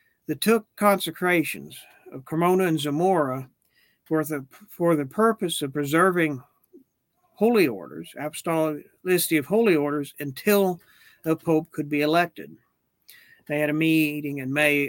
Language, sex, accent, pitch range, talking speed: English, male, American, 145-175 Hz, 130 wpm